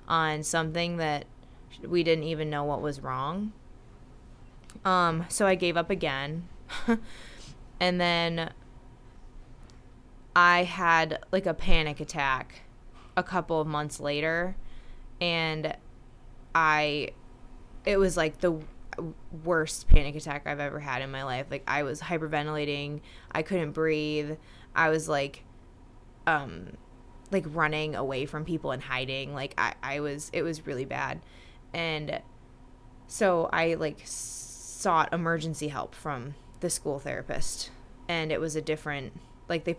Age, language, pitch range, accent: 20-39, English, 140-170 Hz, American